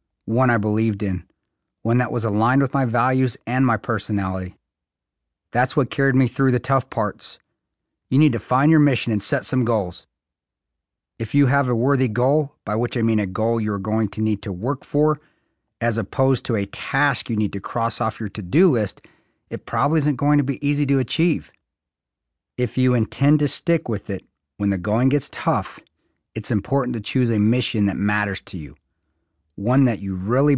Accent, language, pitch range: American, English, 95-130 Hz